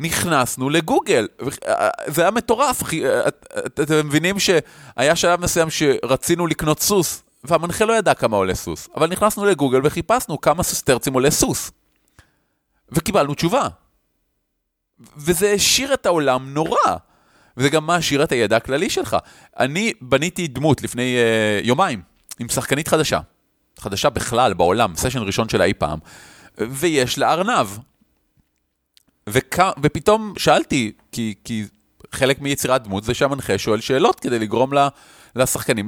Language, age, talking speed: Hebrew, 30-49, 130 wpm